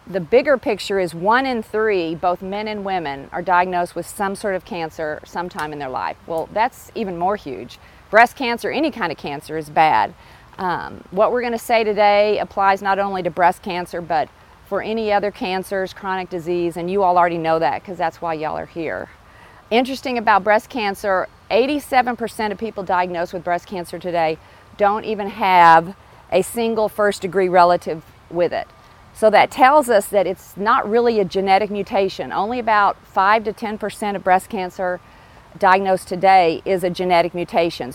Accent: American